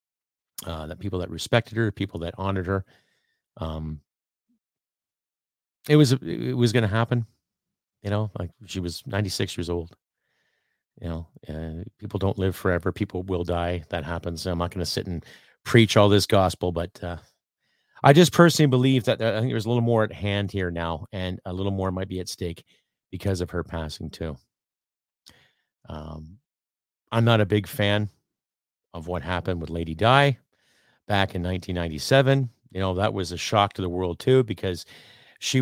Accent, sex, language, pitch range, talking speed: American, male, English, 85-105 Hz, 180 wpm